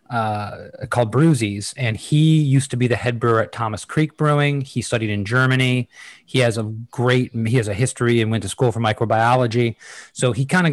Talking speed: 205 wpm